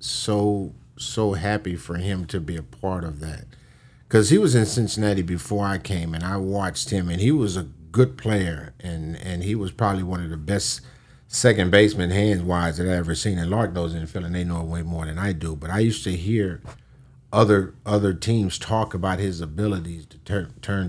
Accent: American